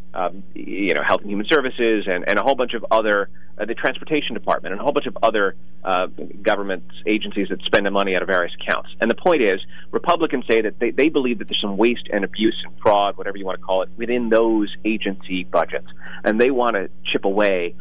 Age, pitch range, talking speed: 30-49, 90-120 Hz, 230 wpm